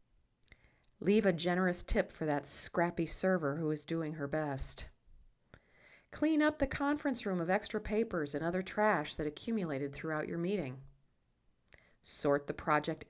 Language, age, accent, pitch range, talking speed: English, 40-59, American, 155-200 Hz, 145 wpm